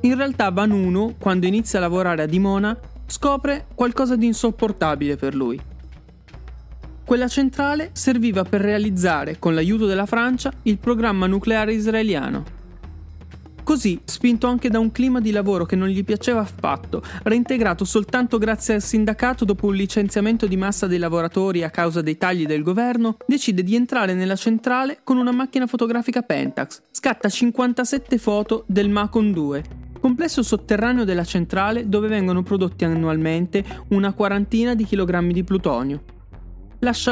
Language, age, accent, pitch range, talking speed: Italian, 20-39, native, 180-240 Hz, 145 wpm